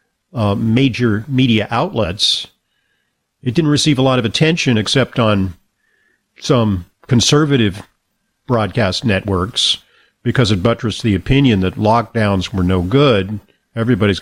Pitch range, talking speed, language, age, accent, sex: 105-140 Hz, 120 wpm, English, 50-69, American, male